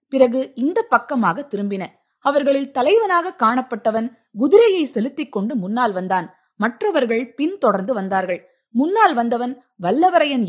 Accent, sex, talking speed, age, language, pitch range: native, female, 105 wpm, 20-39, Tamil, 185-250 Hz